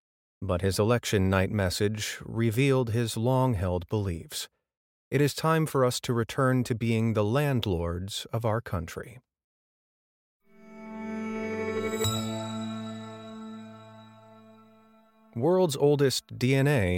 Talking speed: 90 wpm